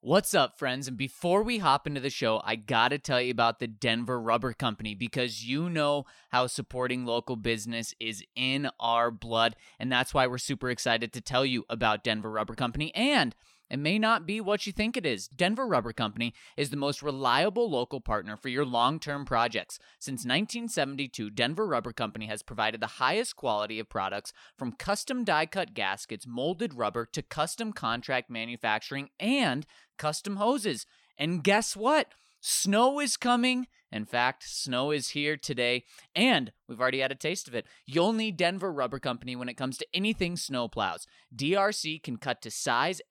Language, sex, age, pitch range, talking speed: English, male, 20-39, 120-165 Hz, 180 wpm